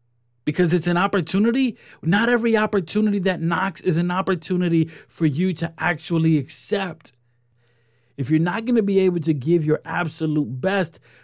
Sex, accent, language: male, American, English